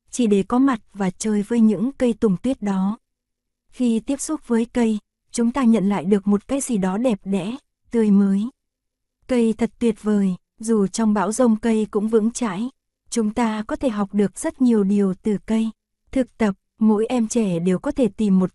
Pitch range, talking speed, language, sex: 205-245 Hz, 205 wpm, Vietnamese, female